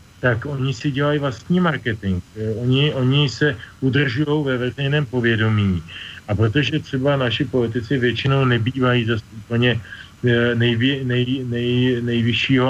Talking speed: 130 wpm